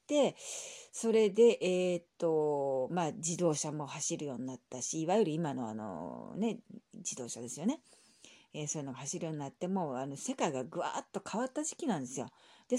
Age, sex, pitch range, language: 40-59, female, 155-235 Hz, Japanese